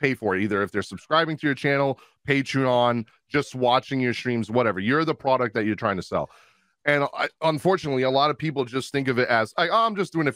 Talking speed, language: 225 wpm, English